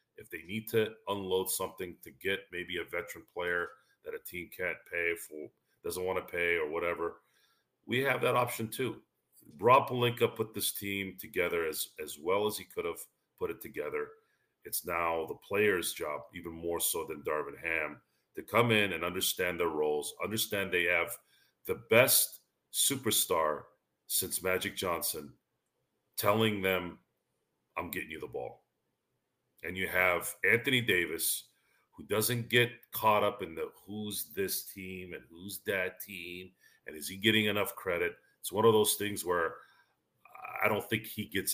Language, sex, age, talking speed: English, male, 40-59, 165 wpm